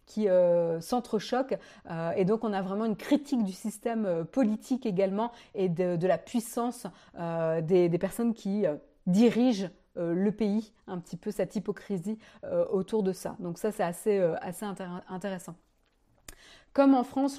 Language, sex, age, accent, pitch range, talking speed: French, female, 30-49, French, 195-255 Hz, 170 wpm